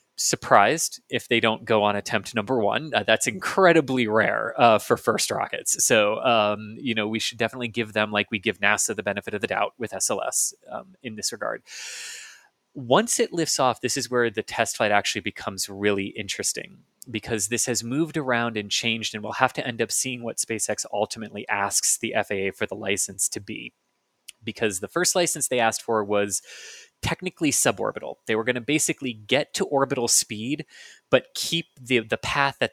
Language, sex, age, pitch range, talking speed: English, male, 20-39, 110-135 Hz, 195 wpm